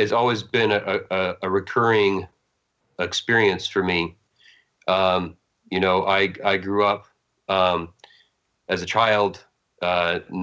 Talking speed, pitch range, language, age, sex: 125 wpm, 90-105 Hz, English, 40-59, male